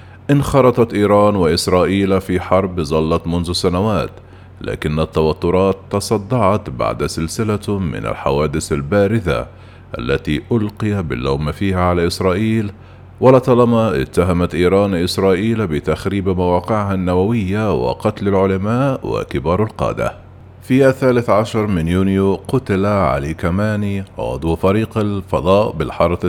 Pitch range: 90-110 Hz